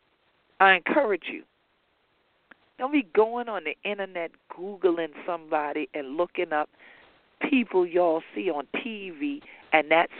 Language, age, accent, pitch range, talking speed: English, 50-69, American, 155-215 Hz, 130 wpm